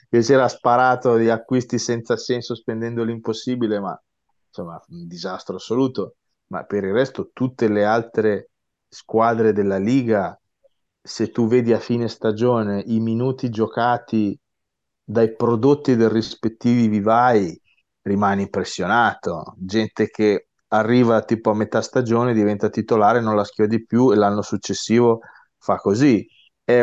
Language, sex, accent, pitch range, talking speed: Italian, male, native, 105-120 Hz, 135 wpm